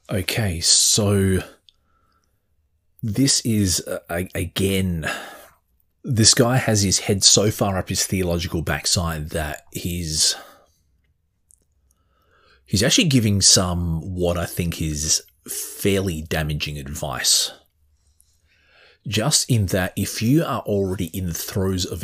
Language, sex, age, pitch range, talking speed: English, male, 30-49, 80-100 Hz, 110 wpm